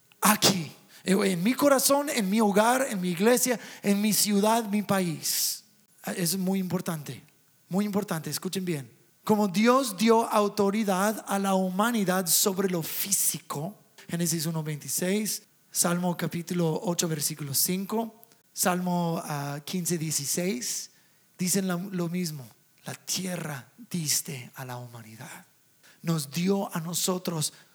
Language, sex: English, male